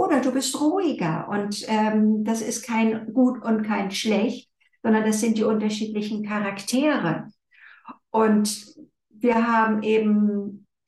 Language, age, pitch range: English, 60-79, 205-230 Hz